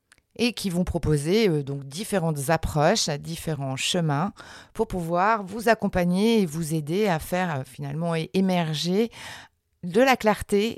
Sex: female